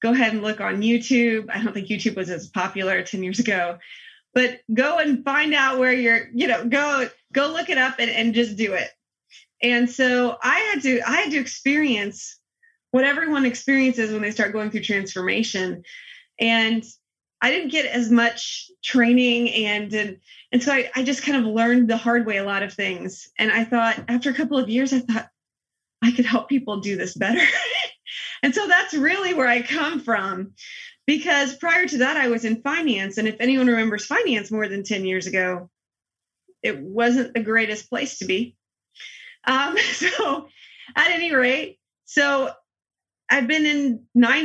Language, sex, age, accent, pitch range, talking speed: English, female, 20-39, American, 220-275 Hz, 185 wpm